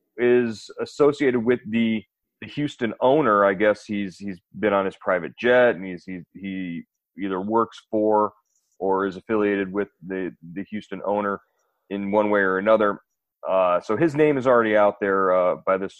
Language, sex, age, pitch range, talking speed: English, male, 30-49, 100-115 Hz, 175 wpm